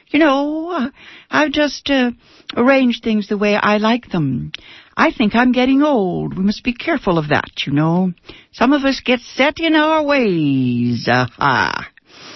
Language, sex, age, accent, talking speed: English, female, 60-79, American, 165 wpm